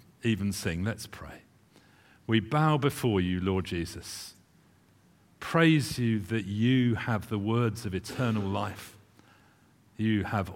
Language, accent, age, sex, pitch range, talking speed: English, British, 50-69, male, 95-110 Hz, 125 wpm